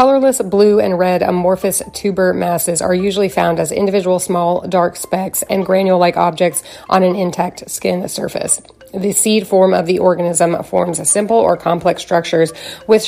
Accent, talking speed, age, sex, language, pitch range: American, 160 wpm, 30-49, female, English, 170-200 Hz